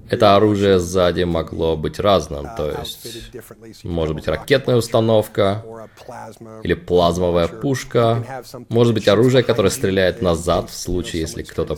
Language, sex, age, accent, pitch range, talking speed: Russian, male, 20-39, native, 85-120 Hz, 125 wpm